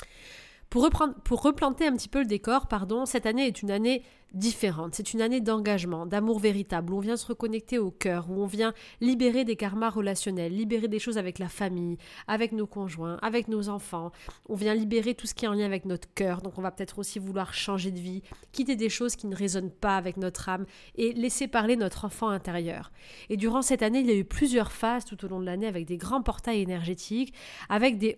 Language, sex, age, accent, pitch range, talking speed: French, female, 30-49, French, 195-240 Hz, 230 wpm